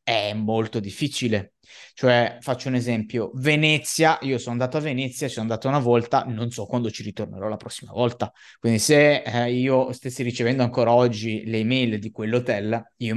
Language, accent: Italian, native